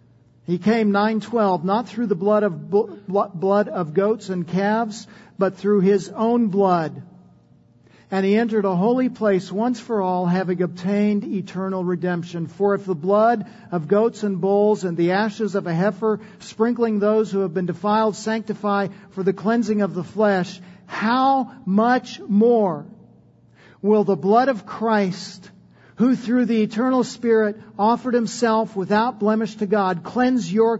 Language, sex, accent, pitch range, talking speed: English, male, American, 195-235 Hz, 155 wpm